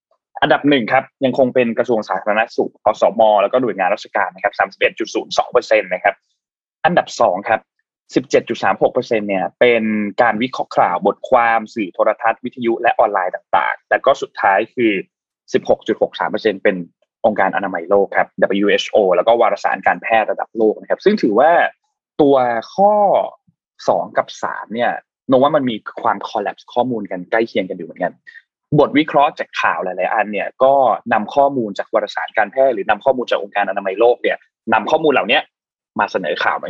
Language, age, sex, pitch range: Thai, 20-39, male, 115-175 Hz